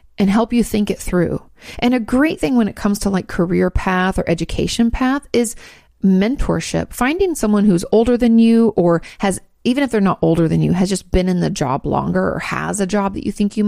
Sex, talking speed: female, 230 wpm